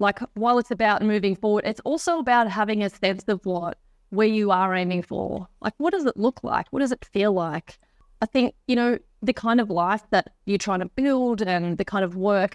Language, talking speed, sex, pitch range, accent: English, 230 wpm, female, 185-230 Hz, Australian